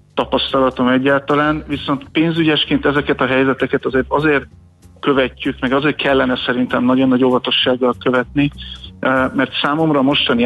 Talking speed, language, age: 125 wpm, Hungarian, 50-69